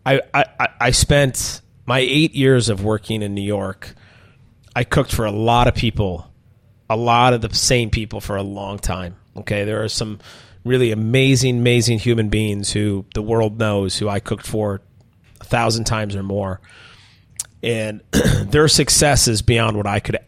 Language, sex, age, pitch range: English, male, 30-49, 100-120 Hz